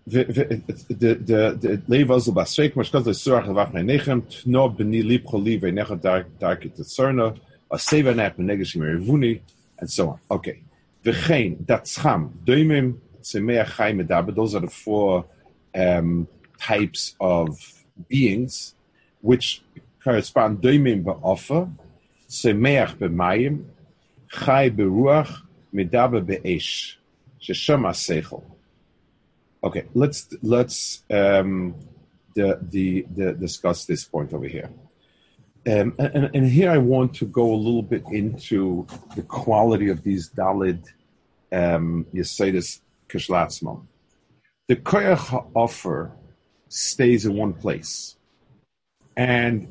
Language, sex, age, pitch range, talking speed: English, male, 40-59, 95-130 Hz, 80 wpm